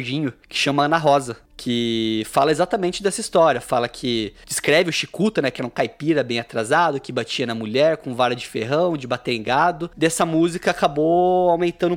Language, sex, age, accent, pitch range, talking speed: Portuguese, male, 20-39, Brazilian, 125-170 Hz, 185 wpm